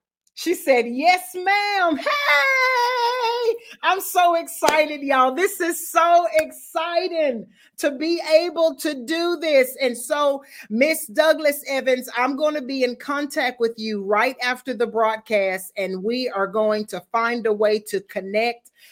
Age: 40-59